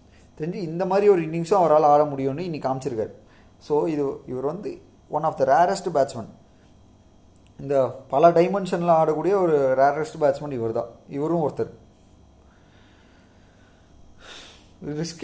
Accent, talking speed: native, 120 wpm